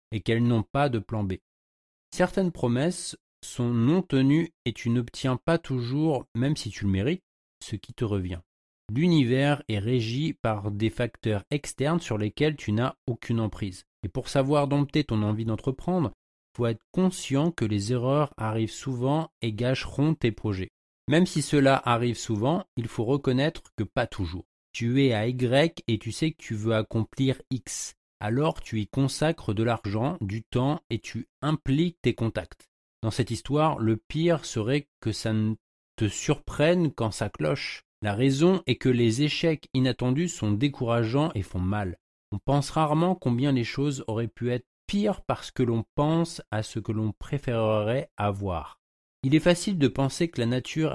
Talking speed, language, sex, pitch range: 175 wpm, French, male, 110-145 Hz